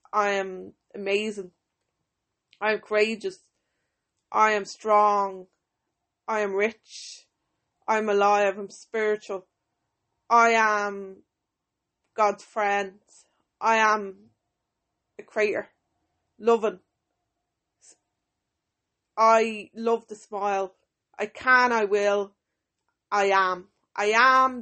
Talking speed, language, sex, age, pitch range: 95 wpm, English, female, 20-39, 195-230 Hz